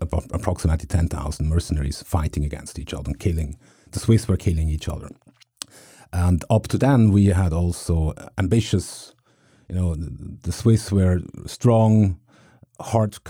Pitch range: 85-100 Hz